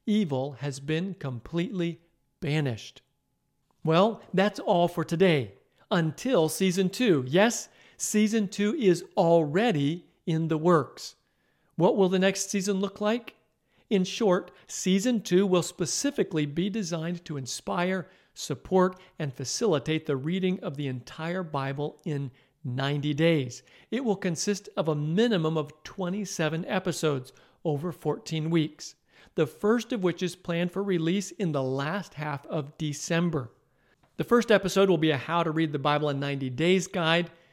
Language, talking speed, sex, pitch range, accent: English, 145 wpm, male, 150-190 Hz, American